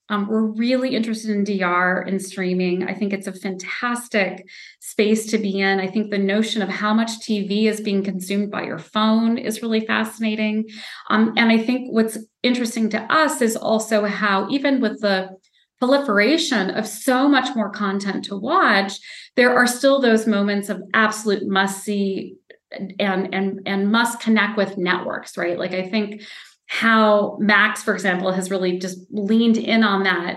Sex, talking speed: female, 170 wpm